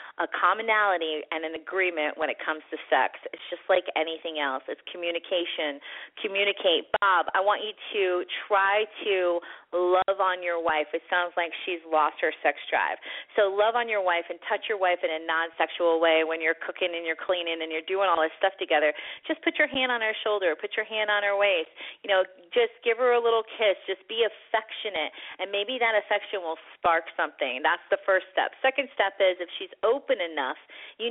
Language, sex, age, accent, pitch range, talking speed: English, female, 30-49, American, 175-225 Hz, 205 wpm